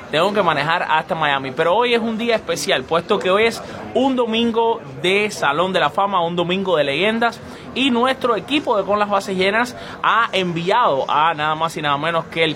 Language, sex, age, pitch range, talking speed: Spanish, male, 20-39, 160-225 Hz, 210 wpm